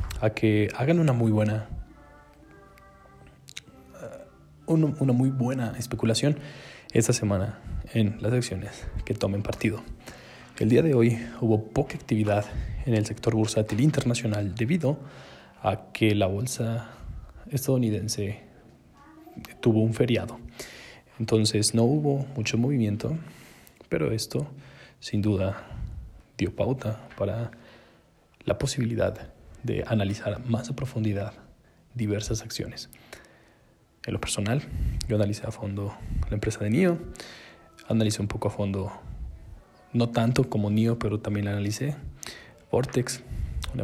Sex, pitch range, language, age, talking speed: male, 105-125 Hz, Spanish, 20-39, 115 wpm